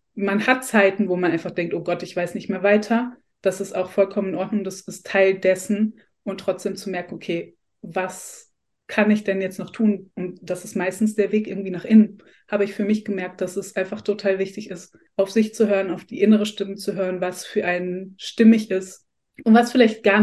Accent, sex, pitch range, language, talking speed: German, female, 180-200 Hz, German, 225 wpm